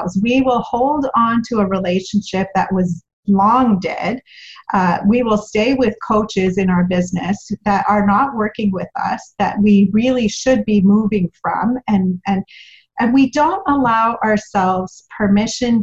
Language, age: English, 40-59